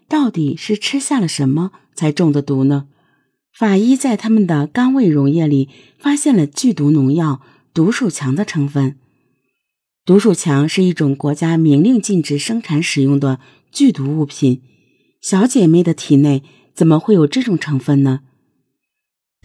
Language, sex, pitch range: Chinese, female, 140-205 Hz